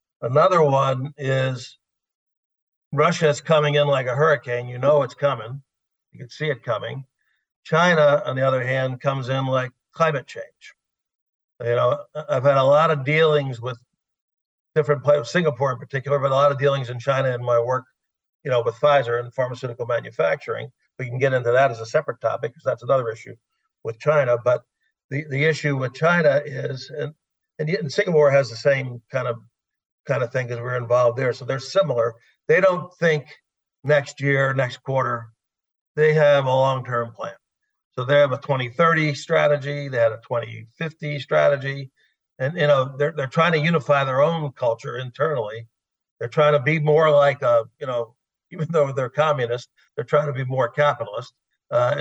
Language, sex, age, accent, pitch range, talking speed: English, male, 50-69, American, 125-150 Hz, 180 wpm